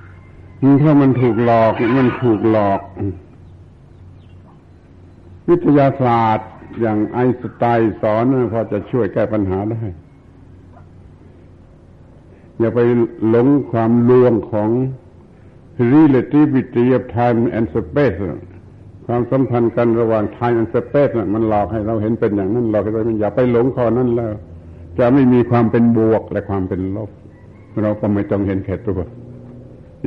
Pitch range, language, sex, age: 95-120 Hz, Thai, male, 70-89